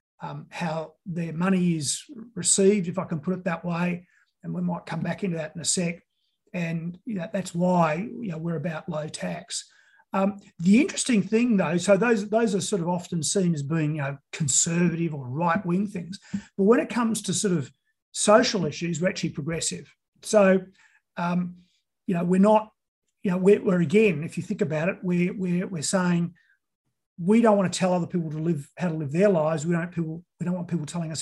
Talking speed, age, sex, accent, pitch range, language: 210 wpm, 40-59, male, Australian, 165-195 Hz, English